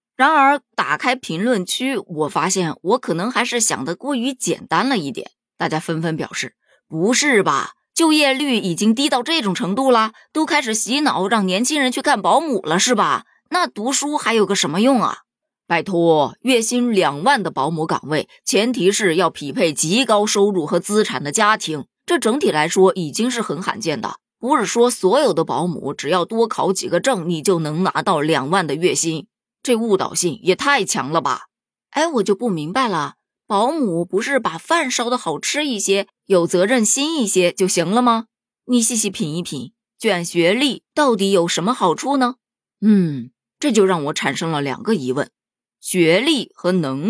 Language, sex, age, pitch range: Chinese, female, 20-39, 170-245 Hz